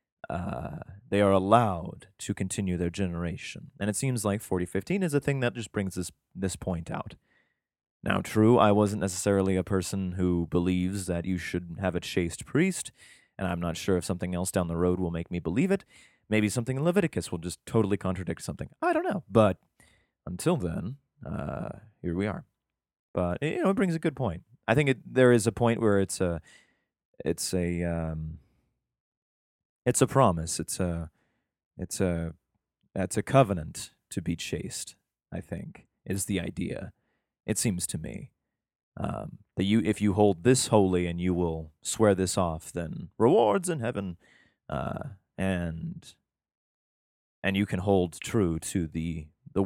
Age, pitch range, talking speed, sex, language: 30-49, 90-110 Hz, 175 wpm, male, English